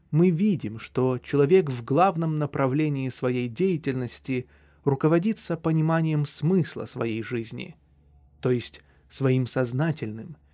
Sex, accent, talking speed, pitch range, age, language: male, native, 100 wpm, 125-160 Hz, 20-39, Russian